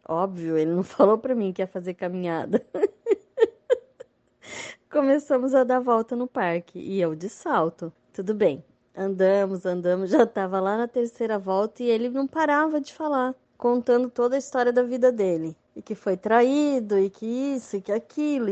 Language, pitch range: Portuguese, 185-235 Hz